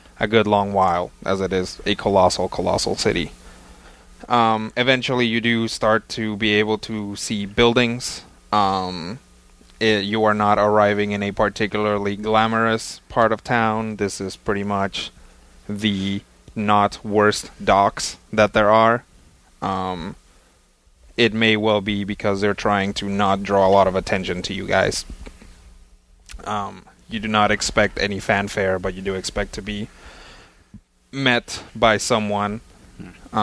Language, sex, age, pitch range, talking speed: English, male, 20-39, 80-110 Hz, 140 wpm